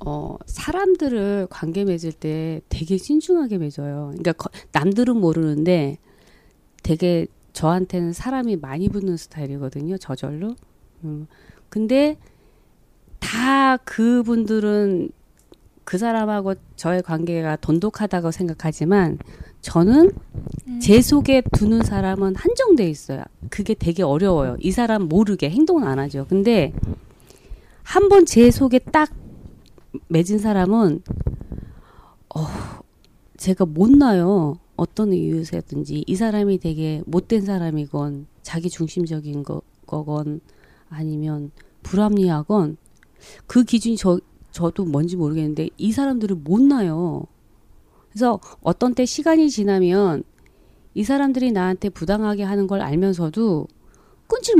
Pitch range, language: 160-220 Hz, Korean